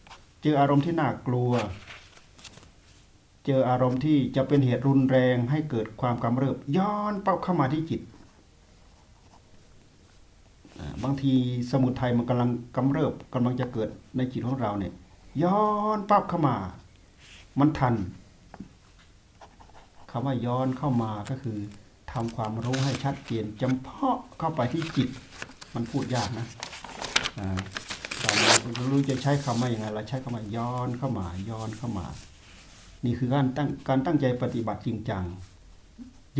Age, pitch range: 60-79, 100-140 Hz